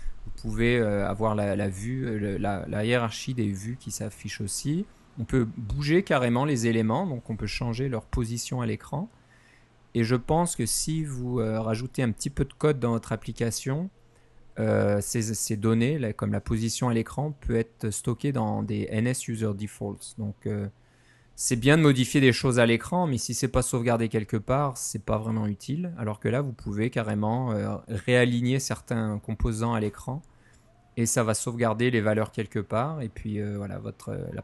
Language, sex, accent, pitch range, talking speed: French, male, French, 110-130 Hz, 200 wpm